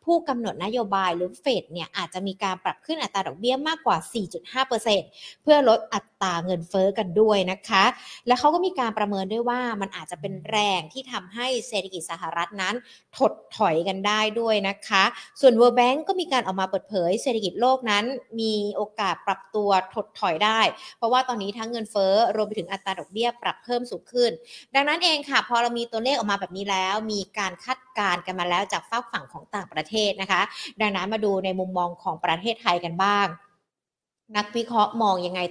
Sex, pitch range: female, 190-245 Hz